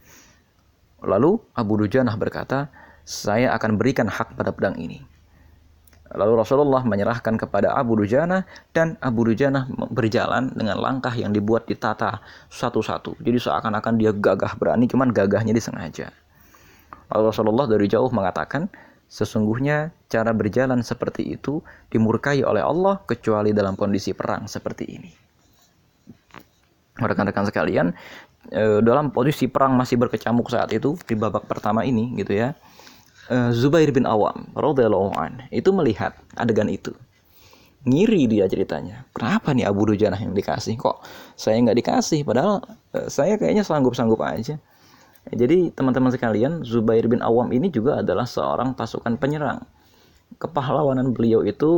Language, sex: Indonesian, male